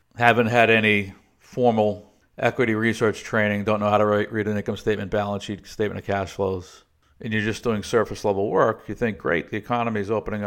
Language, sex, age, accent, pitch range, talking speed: English, male, 50-69, American, 95-115 Hz, 190 wpm